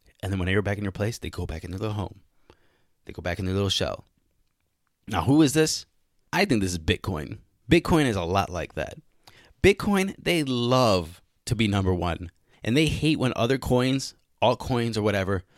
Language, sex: English, male